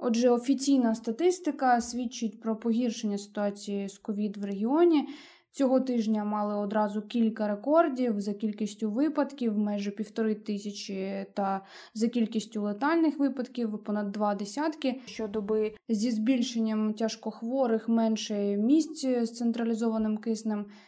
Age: 20-39